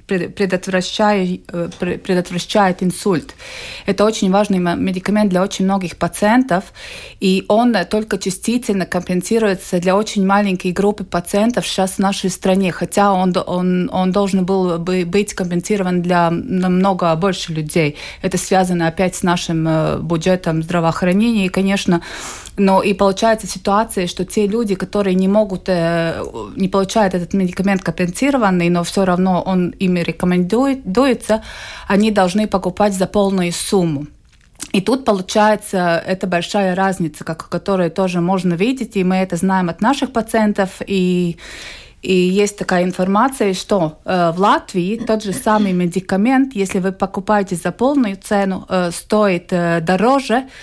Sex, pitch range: female, 180-205 Hz